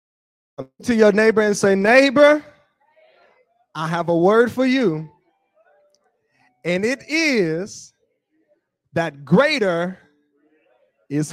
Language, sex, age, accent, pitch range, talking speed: English, male, 20-39, American, 155-225 Hz, 95 wpm